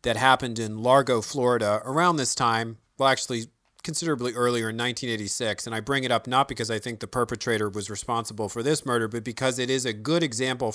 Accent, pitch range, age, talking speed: American, 120-140 Hz, 40-59, 205 wpm